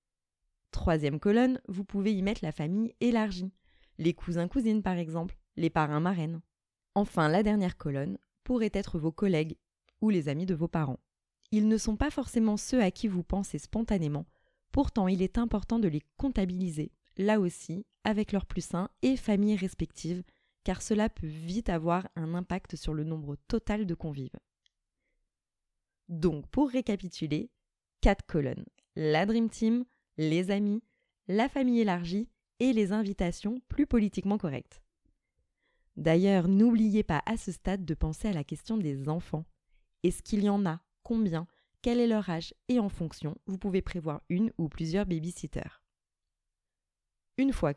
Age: 20-39